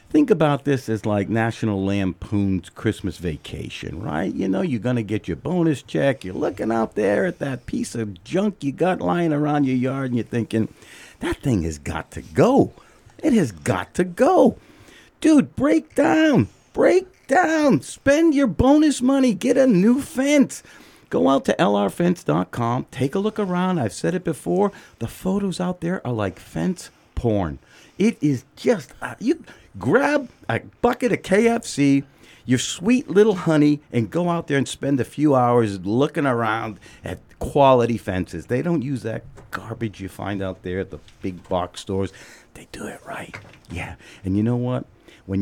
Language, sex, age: English, male, 50-69